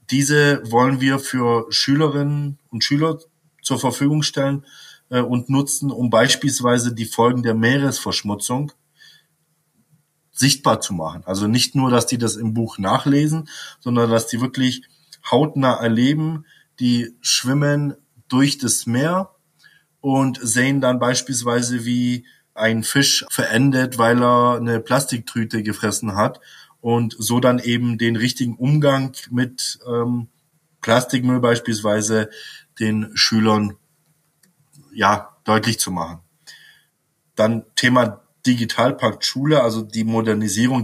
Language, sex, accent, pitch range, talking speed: German, male, German, 115-140 Hz, 115 wpm